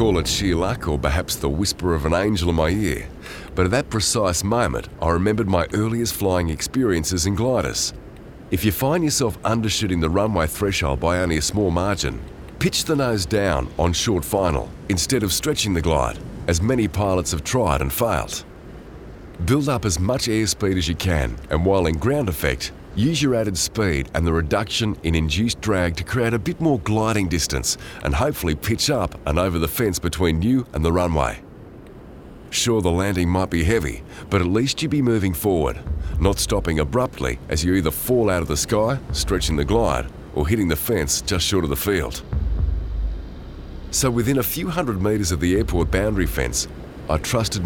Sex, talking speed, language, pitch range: male, 190 wpm, English, 80-110 Hz